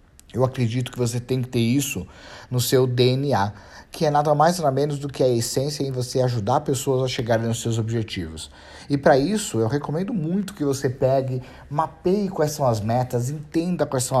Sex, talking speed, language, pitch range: male, 200 wpm, Portuguese, 115-150 Hz